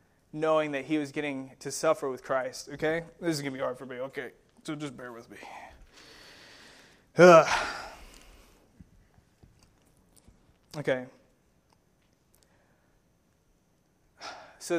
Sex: male